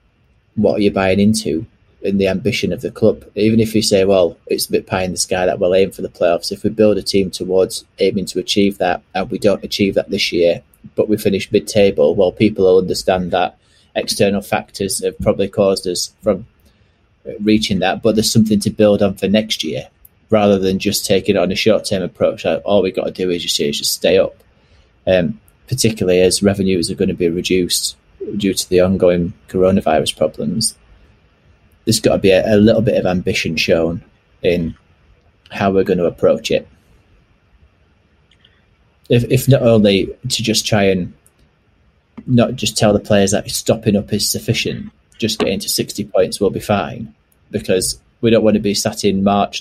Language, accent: English, British